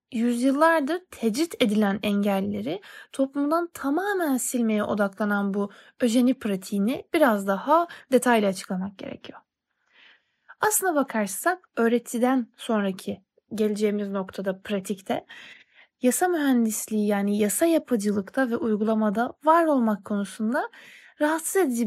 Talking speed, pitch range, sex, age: 95 wpm, 205-290 Hz, female, 20-39